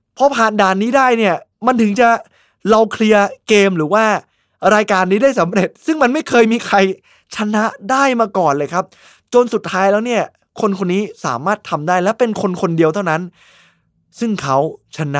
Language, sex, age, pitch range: Thai, male, 20-39, 150-215 Hz